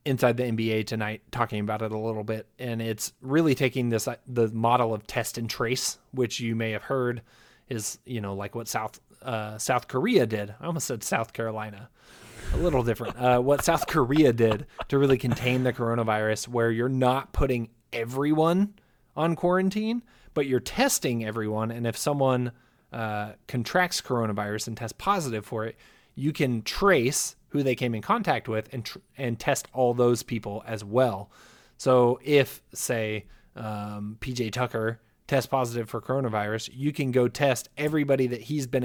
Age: 20-39